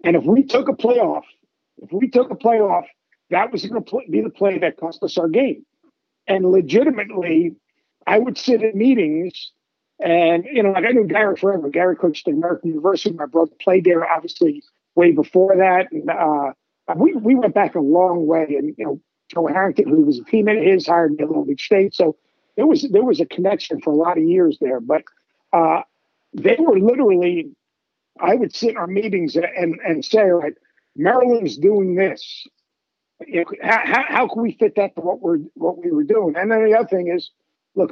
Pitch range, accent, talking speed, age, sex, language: 175-255 Hz, American, 205 wpm, 50-69, male, English